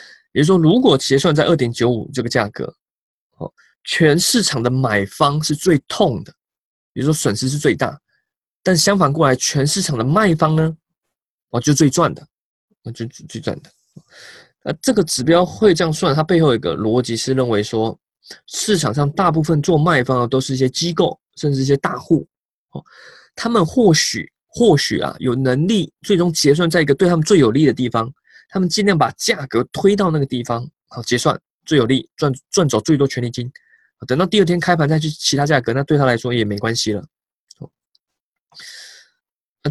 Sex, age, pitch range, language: male, 20-39, 125-170 Hz, Chinese